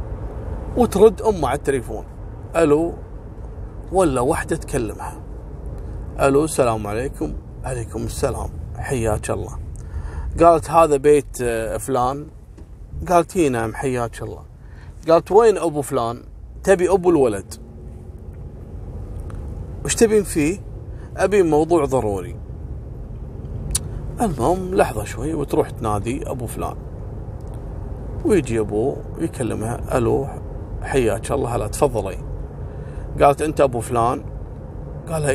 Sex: male